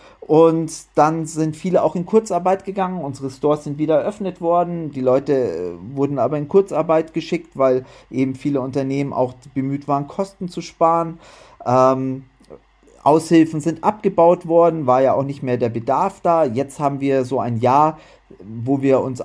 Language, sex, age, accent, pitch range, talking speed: German, male, 40-59, German, 135-170 Hz, 165 wpm